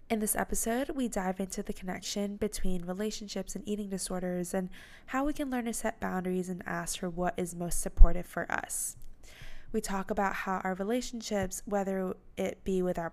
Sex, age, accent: female, 20-39, American